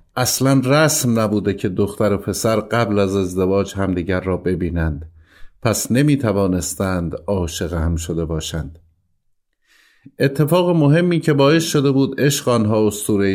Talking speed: 125 wpm